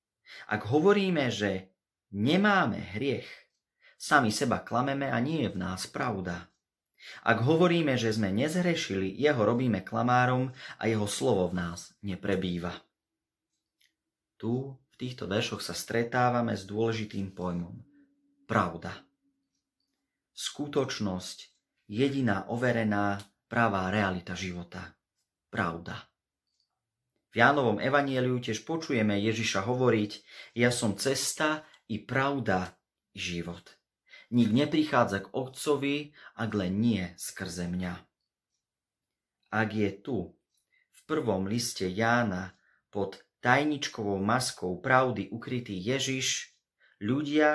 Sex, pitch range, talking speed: male, 95-135 Hz, 105 wpm